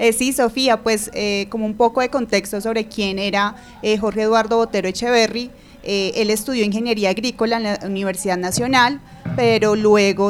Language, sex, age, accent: Spanish, female, 30-49, Colombian